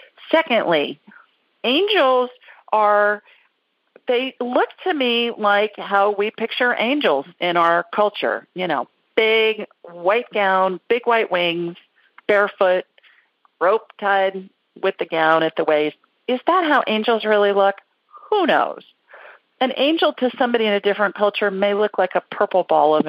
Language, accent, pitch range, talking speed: English, American, 175-235 Hz, 145 wpm